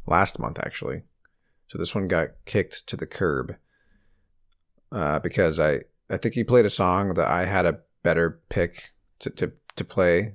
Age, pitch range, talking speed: 40-59, 85-105 Hz, 175 wpm